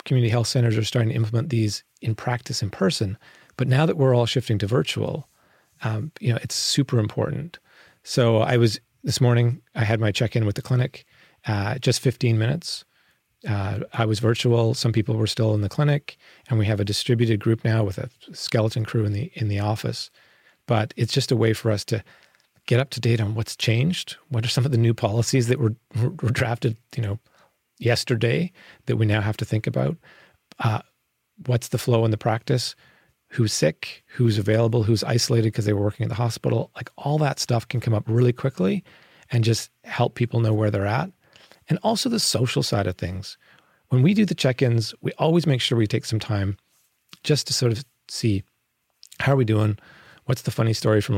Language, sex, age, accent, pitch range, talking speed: English, male, 30-49, American, 110-130 Hz, 205 wpm